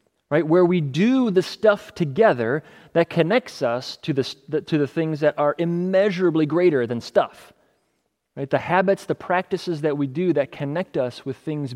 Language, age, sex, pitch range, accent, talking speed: English, 30-49, male, 125-170 Hz, American, 175 wpm